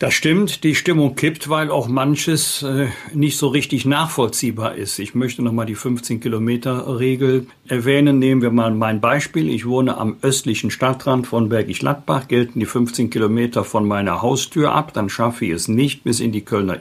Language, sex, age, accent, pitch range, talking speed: German, male, 50-69, German, 120-145 Hz, 180 wpm